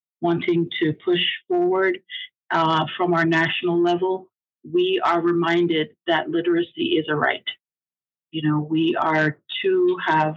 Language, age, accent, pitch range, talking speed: English, 50-69, American, 155-175 Hz, 135 wpm